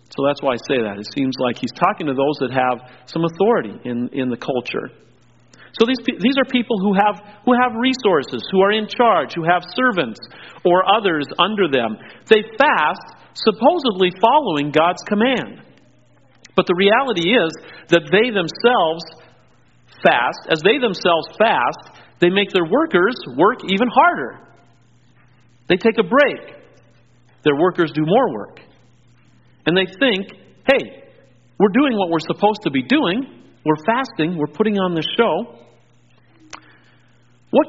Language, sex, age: English, male, 40-59